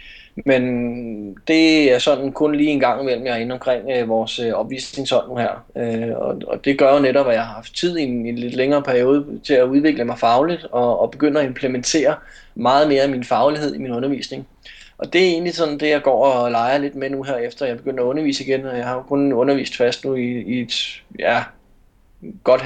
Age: 20-39